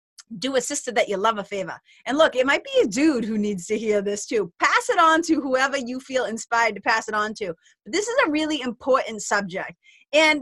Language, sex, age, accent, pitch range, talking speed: English, female, 30-49, American, 215-290 Hz, 240 wpm